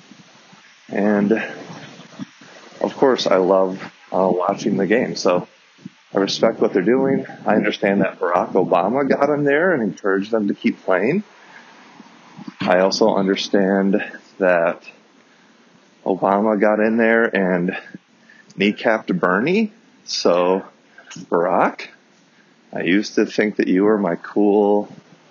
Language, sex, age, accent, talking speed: English, male, 30-49, American, 120 wpm